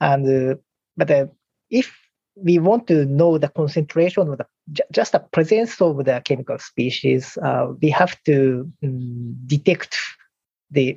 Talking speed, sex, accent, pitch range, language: 155 wpm, male, Japanese, 135-170 Hz, English